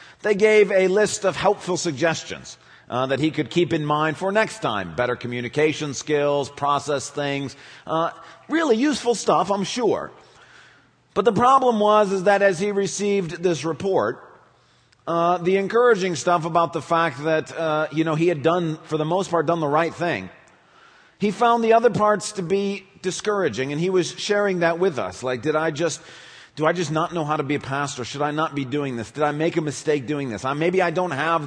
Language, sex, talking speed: English, male, 205 wpm